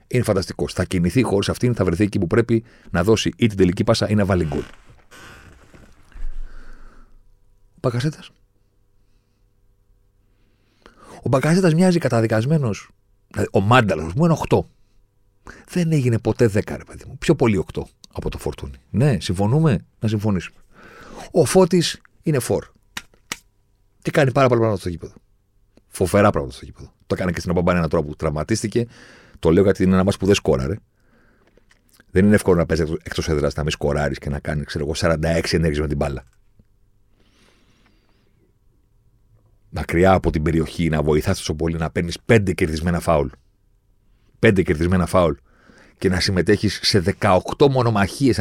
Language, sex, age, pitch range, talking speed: Greek, male, 40-59, 90-110 Hz, 150 wpm